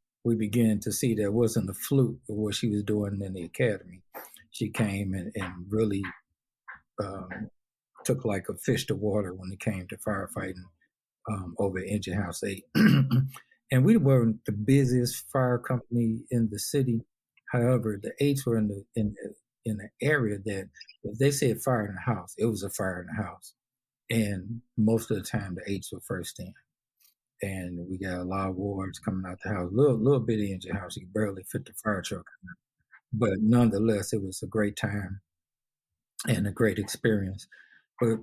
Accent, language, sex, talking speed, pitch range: American, English, male, 195 wpm, 100-120 Hz